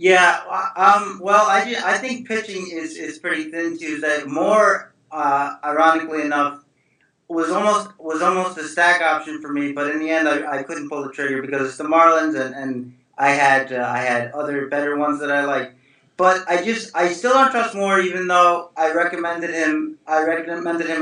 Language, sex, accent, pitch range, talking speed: English, male, American, 150-175 Hz, 200 wpm